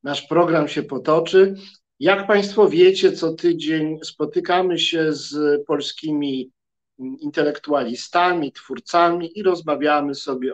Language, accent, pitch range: Polish, native, 140-185 Hz